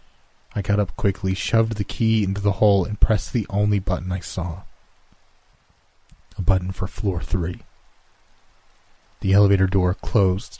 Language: English